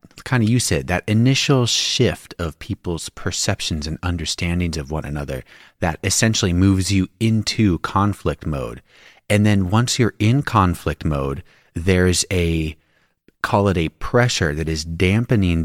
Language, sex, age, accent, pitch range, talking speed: English, male, 30-49, American, 80-105 Hz, 145 wpm